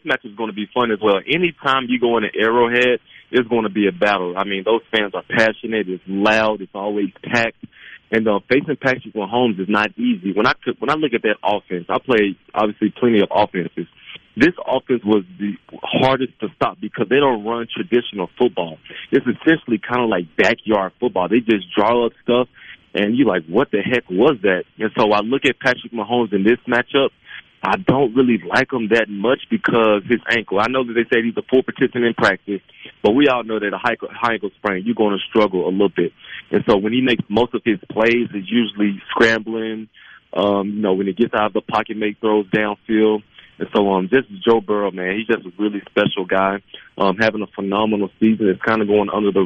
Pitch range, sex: 100-120 Hz, male